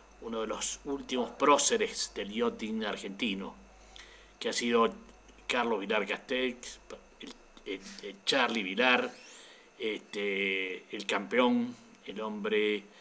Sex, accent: male, Argentinian